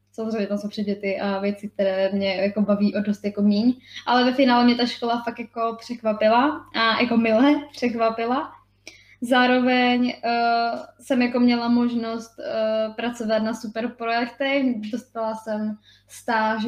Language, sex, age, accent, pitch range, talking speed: Czech, female, 10-29, native, 215-245 Hz, 145 wpm